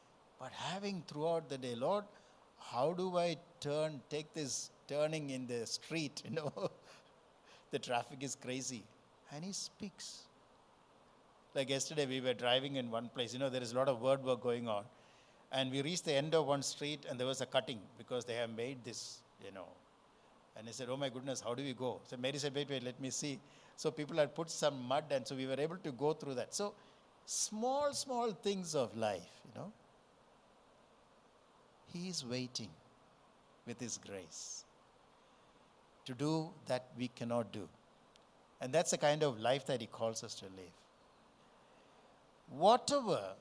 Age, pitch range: 60-79, 125-190 Hz